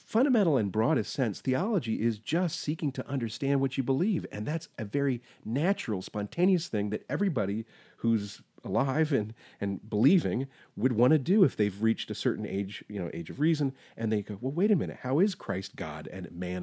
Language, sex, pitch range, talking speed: English, male, 110-165 Hz, 200 wpm